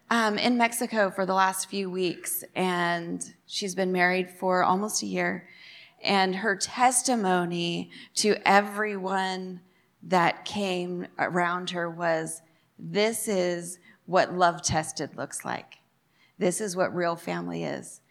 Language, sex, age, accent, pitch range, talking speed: English, female, 30-49, American, 180-220 Hz, 125 wpm